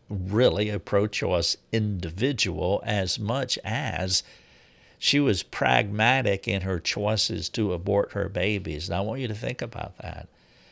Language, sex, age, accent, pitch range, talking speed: English, male, 60-79, American, 95-115 Hz, 135 wpm